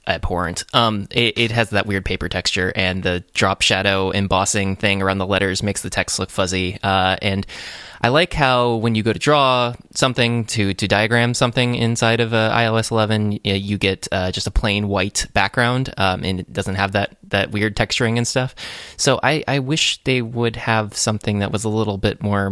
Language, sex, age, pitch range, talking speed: English, male, 20-39, 100-115 Hz, 205 wpm